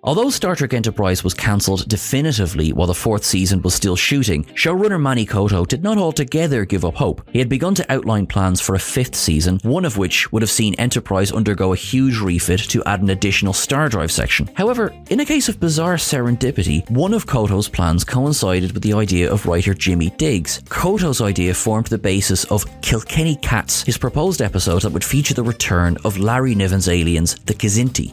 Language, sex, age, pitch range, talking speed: English, male, 30-49, 95-125 Hz, 195 wpm